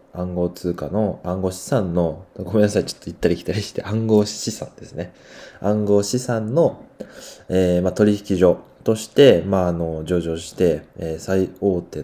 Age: 20-39